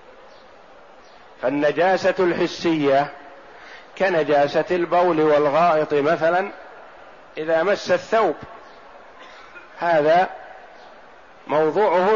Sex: male